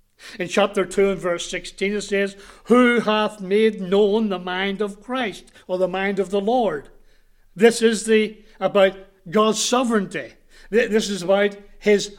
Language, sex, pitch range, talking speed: English, male, 175-210 Hz, 160 wpm